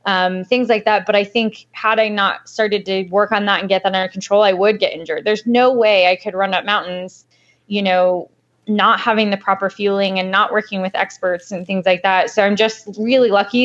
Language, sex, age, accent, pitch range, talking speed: English, female, 10-29, American, 195-220 Hz, 235 wpm